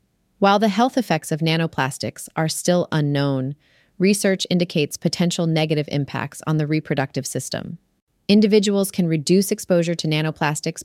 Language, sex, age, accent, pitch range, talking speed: English, female, 30-49, American, 145-180 Hz, 135 wpm